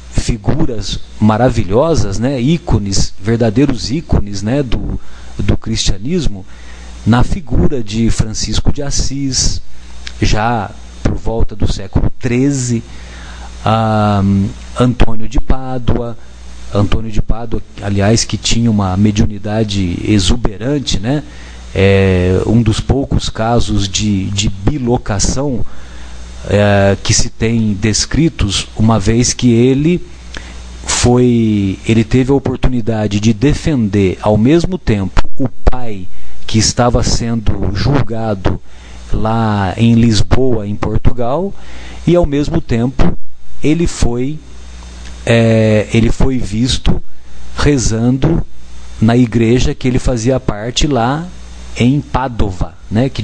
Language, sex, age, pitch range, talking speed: Portuguese, male, 40-59, 95-125 Hz, 105 wpm